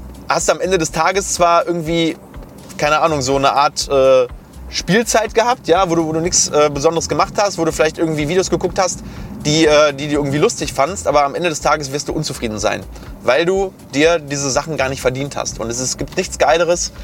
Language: German